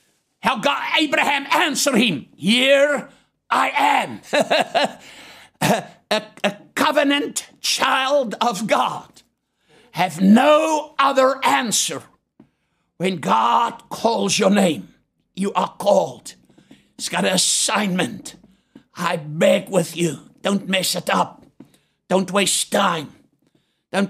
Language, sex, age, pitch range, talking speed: English, male, 60-79, 185-230 Hz, 105 wpm